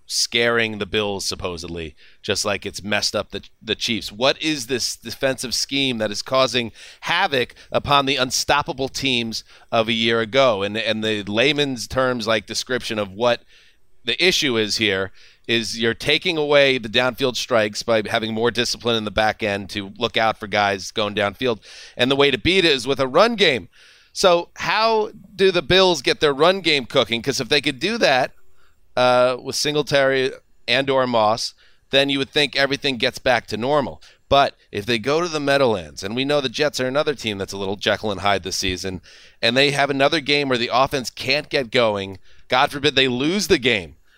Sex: male